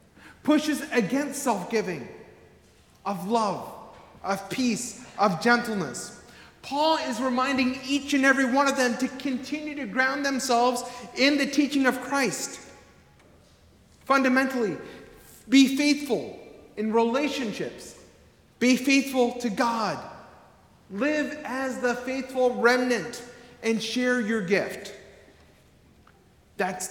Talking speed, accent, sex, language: 105 wpm, American, male, English